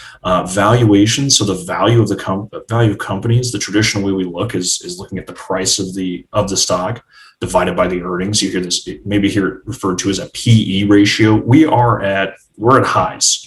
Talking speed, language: 215 wpm, English